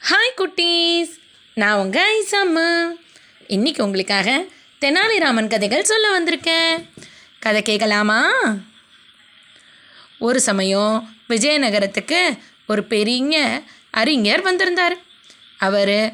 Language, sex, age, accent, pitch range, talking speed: Tamil, female, 20-39, native, 215-315 Hz, 80 wpm